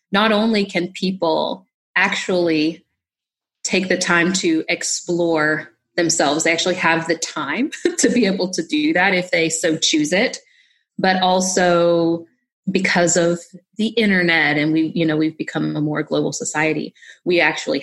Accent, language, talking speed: American, English, 150 wpm